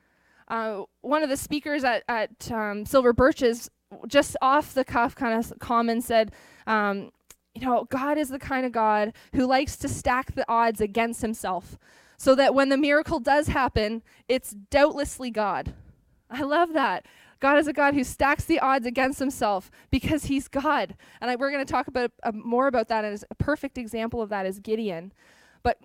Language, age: English, 20-39